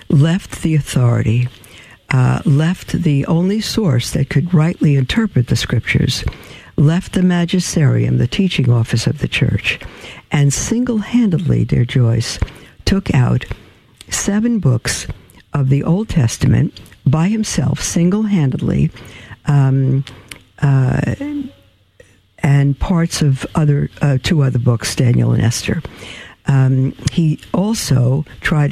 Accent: American